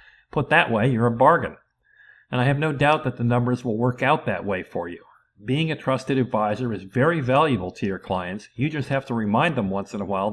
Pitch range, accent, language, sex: 110-130 Hz, American, English, male